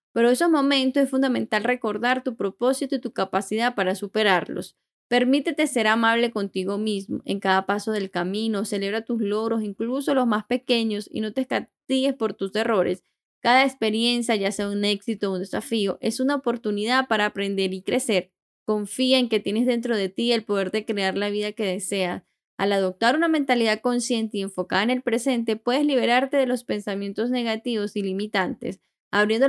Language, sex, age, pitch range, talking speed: Spanish, female, 10-29, 200-245 Hz, 180 wpm